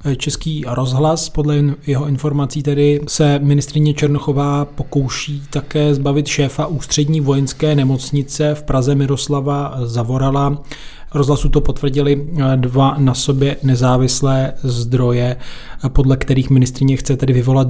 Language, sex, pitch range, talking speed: Czech, male, 130-150 Hz, 115 wpm